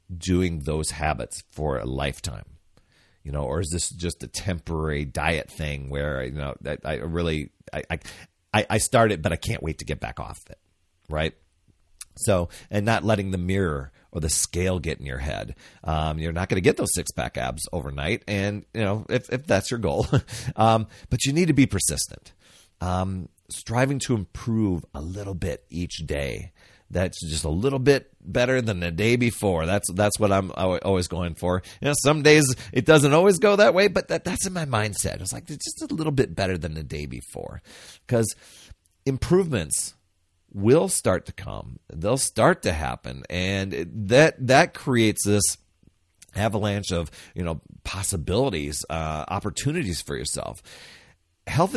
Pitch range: 80-115 Hz